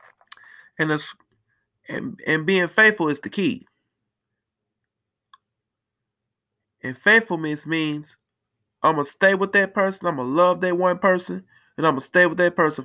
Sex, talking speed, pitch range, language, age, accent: male, 165 wpm, 110-180 Hz, English, 20-39, American